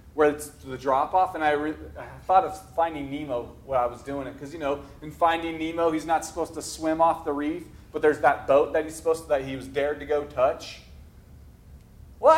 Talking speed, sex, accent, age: 230 wpm, male, American, 30-49